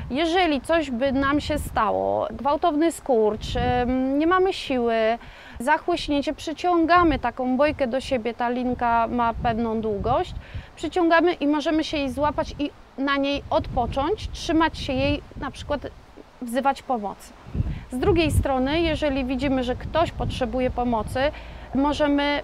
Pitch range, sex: 250-295 Hz, female